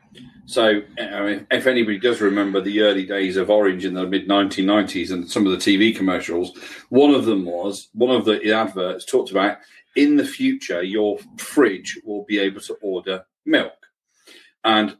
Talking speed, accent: 170 wpm, British